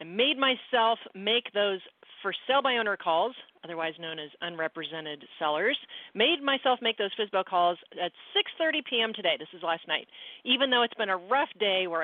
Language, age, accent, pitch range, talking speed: English, 40-59, American, 180-240 Hz, 185 wpm